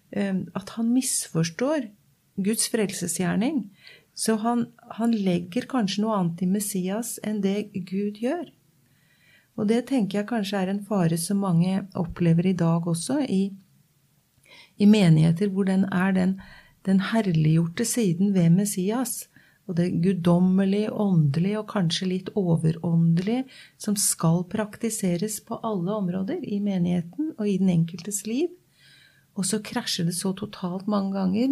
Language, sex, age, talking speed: English, female, 40-59, 135 wpm